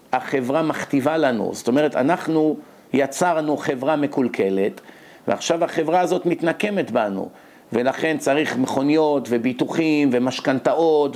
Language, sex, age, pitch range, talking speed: Hebrew, male, 50-69, 145-180 Hz, 100 wpm